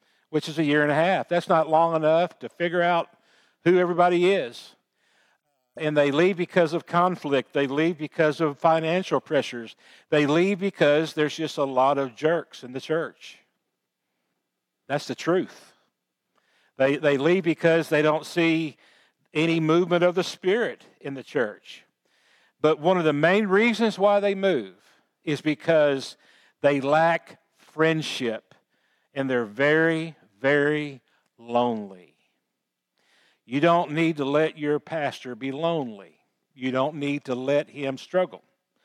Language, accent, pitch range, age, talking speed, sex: English, American, 140-175 Hz, 50-69, 145 wpm, male